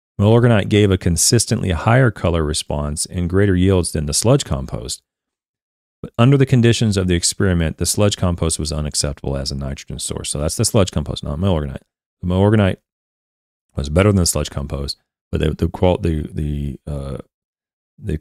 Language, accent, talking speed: English, American, 170 wpm